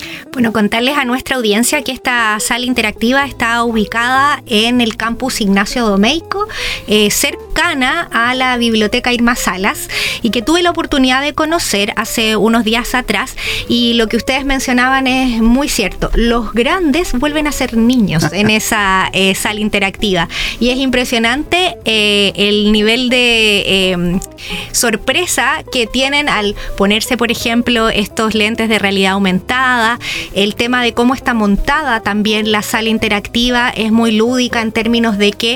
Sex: female